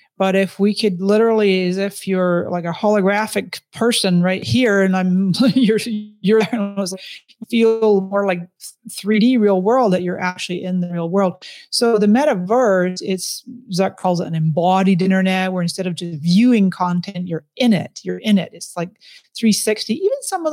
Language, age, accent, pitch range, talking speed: English, 30-49, American, 180-215 Hz, 185 wpm